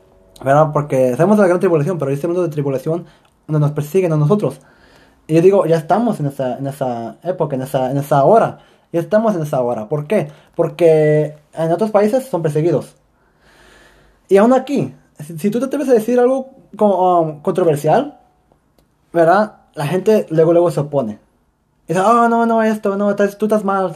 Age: 20-39